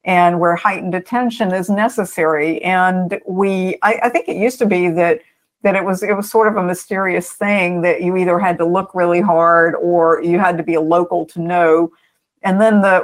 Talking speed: 210 wpm